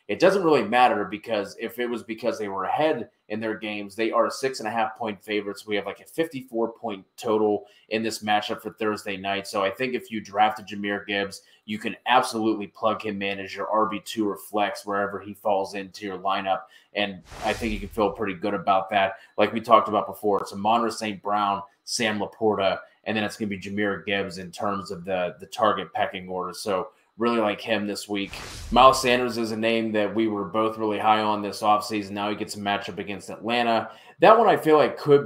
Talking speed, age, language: 230 wpm, 30-49, English